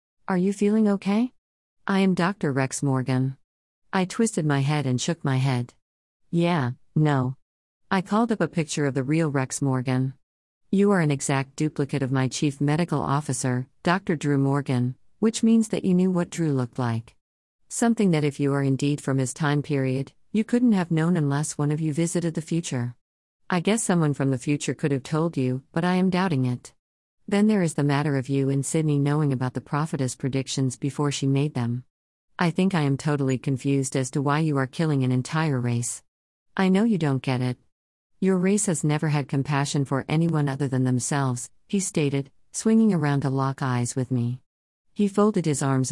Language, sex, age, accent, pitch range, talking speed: English, female, 50-69, American, 130-170 Hz, 195 wpm